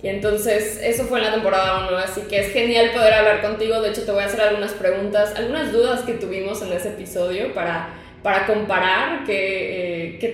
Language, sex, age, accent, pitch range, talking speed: Spanish, female, 10-29, Mexican, 185-225 Hz, 205 wpm